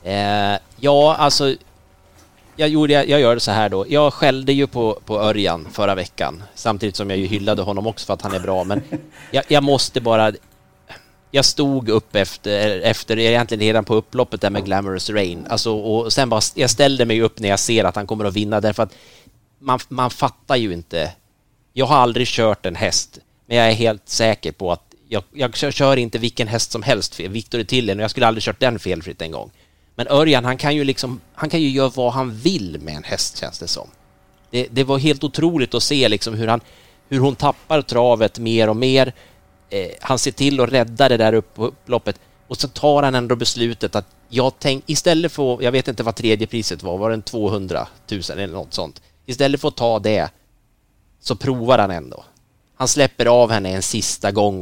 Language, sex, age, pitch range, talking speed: Swedish, male, 30-49, 105-135 Hz, 215 wpm